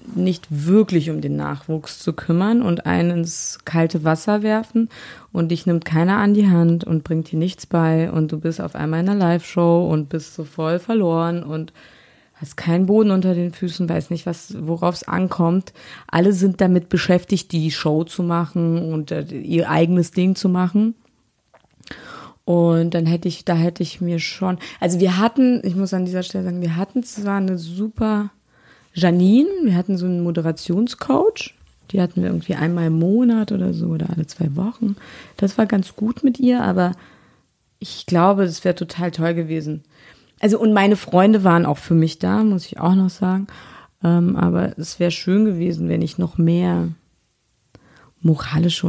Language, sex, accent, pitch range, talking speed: German, female, German, 165-190 Hz, 180 wpm